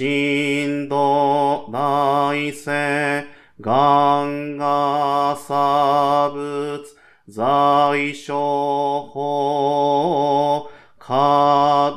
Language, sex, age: Japanese, male, 40-59